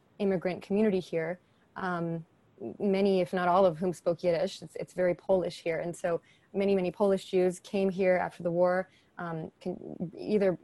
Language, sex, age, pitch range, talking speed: English, female, 20-39, 175-205 Hz, 175 wpm